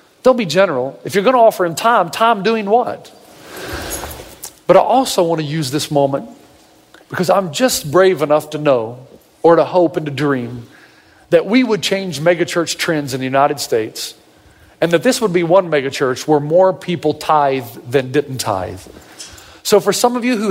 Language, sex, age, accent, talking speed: English, male, 40-59, American, 185 wpm